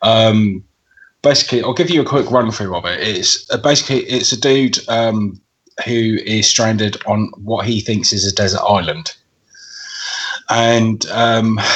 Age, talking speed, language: 20-39, 160 wpm, English